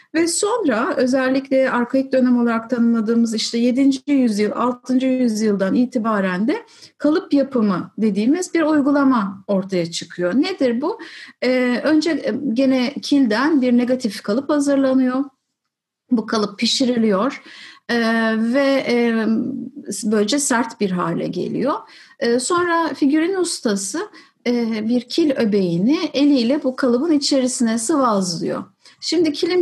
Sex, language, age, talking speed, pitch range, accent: female, Turkish, 60-79, 115 wpm, 225-290 Hz, native